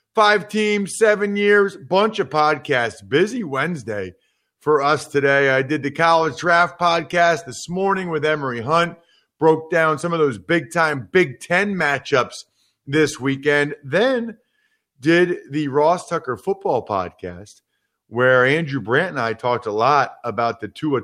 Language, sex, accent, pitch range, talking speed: English, male, American, 130-170 Hz, 150 wpm